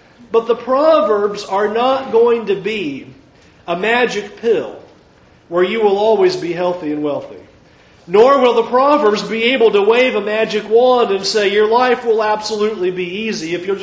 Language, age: English, 40-59